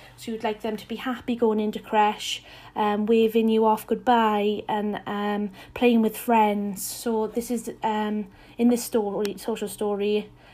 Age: 30-49